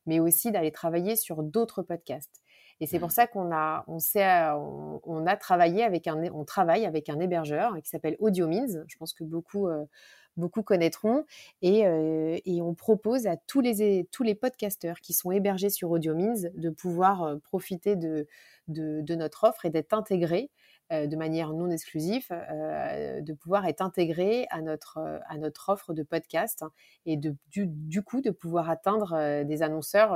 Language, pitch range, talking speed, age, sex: French, 155-190 Hz, 170 wpm, 30-49, female